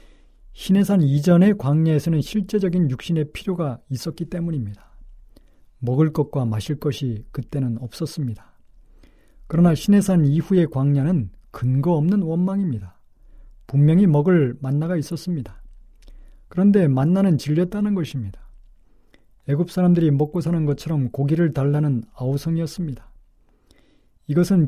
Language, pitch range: Korean, 130-170 Hz